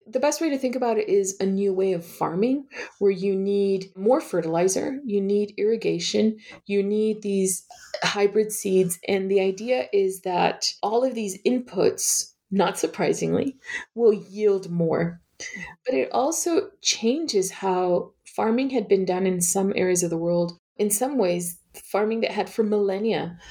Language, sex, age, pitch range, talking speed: English, female, 30-49, 180-235 Hz, 160 wpm